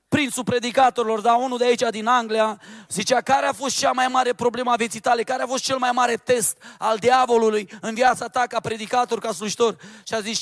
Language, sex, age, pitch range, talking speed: Romanian, male, 30-49, 215-260 Hz, 215 wpm